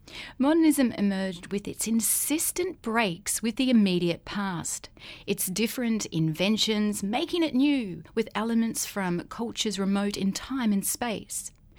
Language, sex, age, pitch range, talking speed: English, female, 30-49, 185-255 Hz, 125 wpm